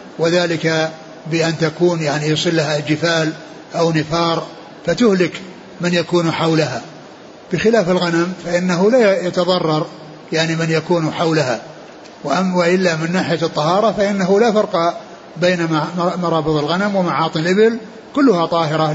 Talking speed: 115 wpm